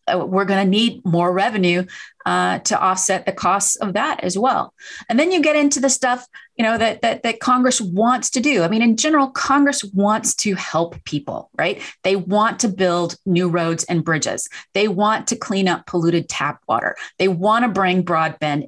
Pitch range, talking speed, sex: 180-245 Hz, 195 wpm, female